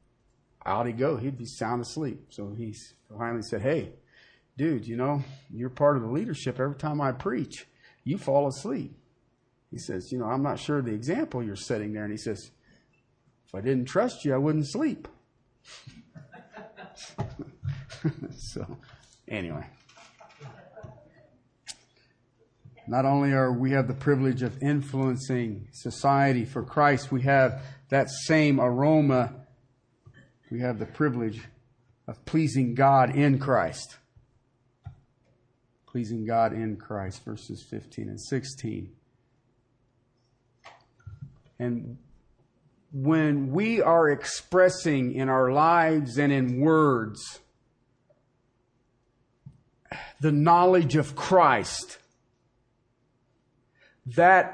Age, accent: 40-59, American